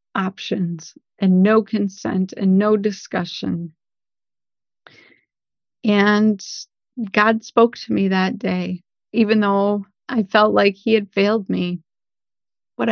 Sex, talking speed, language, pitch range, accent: female, 110 wpm, English, 180-220 Hz, American